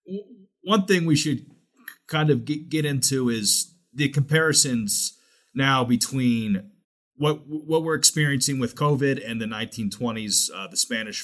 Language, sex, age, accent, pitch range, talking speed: English, male, 30-49, American, 110-145 Hz, 135 wpm